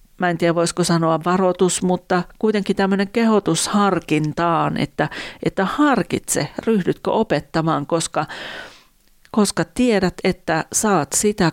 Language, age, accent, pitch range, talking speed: Finnish, 40-59, native, 155-190 Hz, 115 wpm